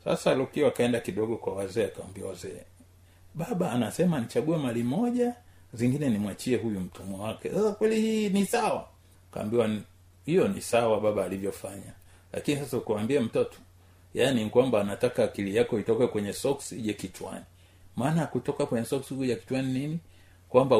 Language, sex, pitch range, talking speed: Swahili, male, 95-135 Hz, 150 wpm